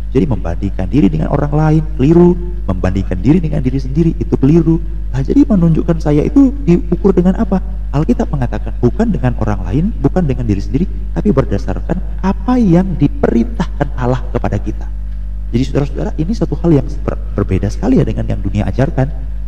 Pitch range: 100-155 Hz